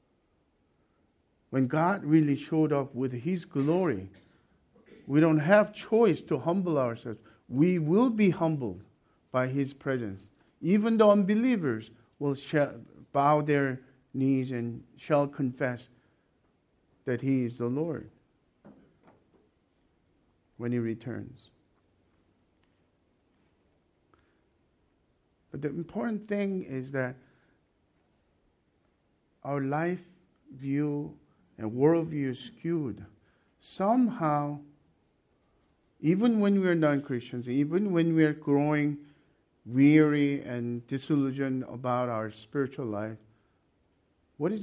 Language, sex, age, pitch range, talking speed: English, male, 50-69, 110-160 Hz, 100 wpm